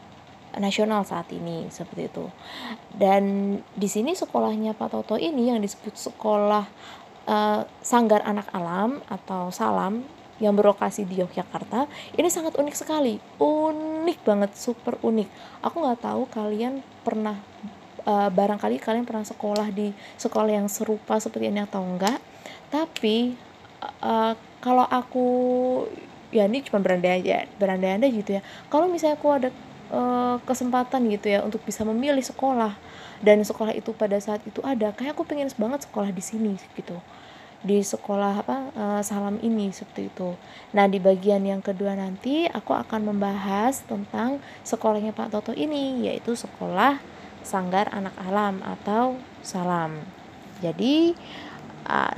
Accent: native